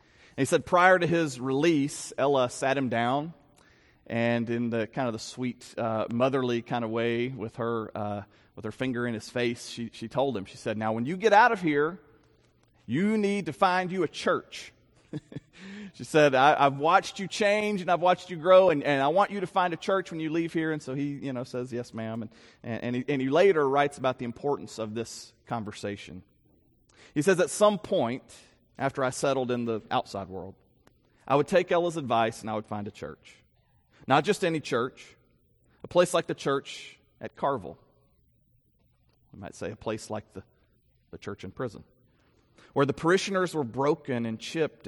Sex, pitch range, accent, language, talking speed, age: male, 115-165 Hz, American, English, 200 wpm, 40-59